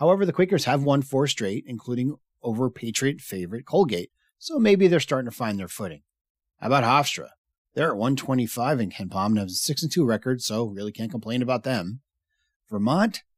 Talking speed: 185 wpm